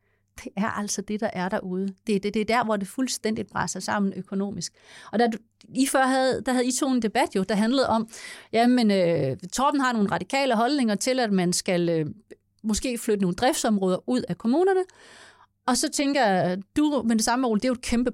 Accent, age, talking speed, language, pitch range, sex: native, 30-49, 205 wpm, Danish, 190-245 Hz, female